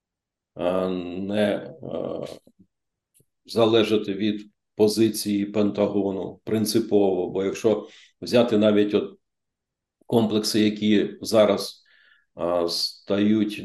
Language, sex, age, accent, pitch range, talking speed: Ukrainian, male, 50-69, native, 100-120 Hz, 65 wpm